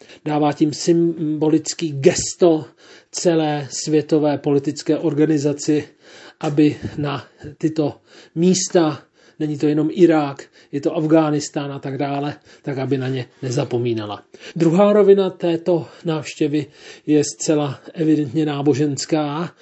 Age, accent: 40-59, native